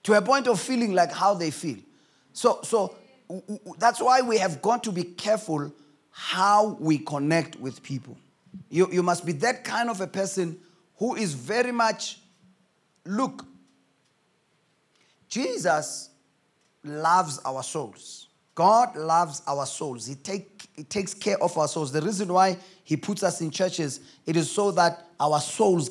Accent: South African